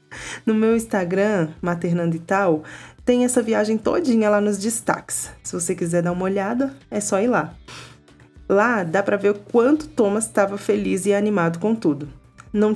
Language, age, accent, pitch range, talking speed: Portuguese, 20-39, Brazilian, 165-210 Hz, 175 wpm